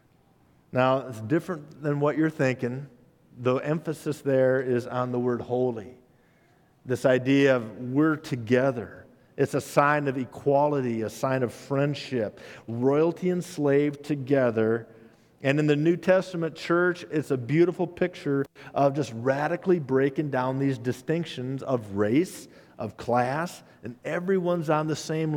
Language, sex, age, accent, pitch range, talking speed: English, male, 50-69, American, 125-160 Hz, 140 wpm